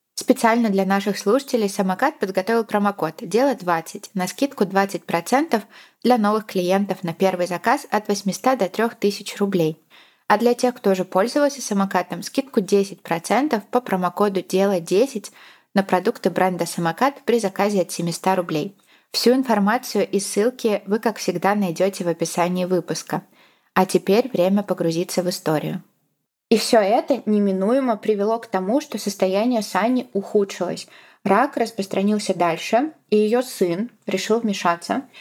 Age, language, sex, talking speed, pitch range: 20-39, Russian, female, 135 wpm, 185-225 Hz